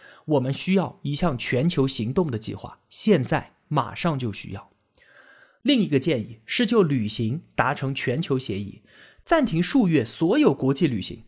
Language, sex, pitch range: Chinese, male, 125-200 Hz